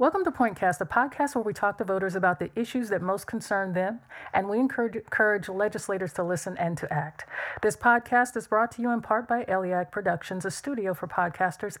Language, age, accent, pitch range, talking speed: English, 40-59, American, 180-235 Hz, 215 wpm